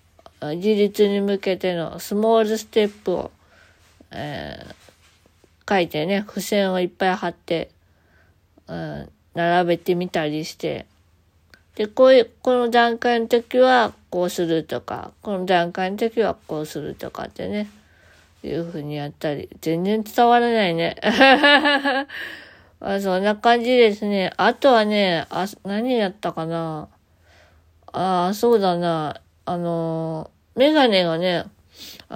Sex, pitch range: female, 170-235 Hz